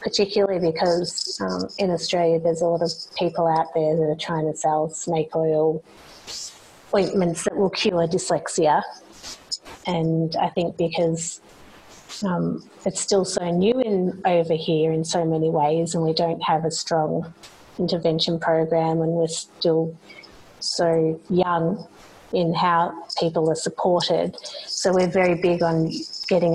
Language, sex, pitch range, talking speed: English, female, 165-185 Hz, 145 wpm